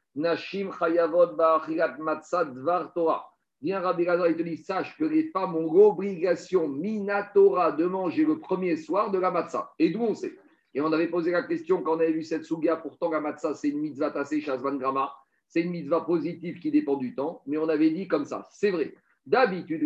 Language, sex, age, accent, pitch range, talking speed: French, male, 50-69, French, 155-205 Hz, 195 wpm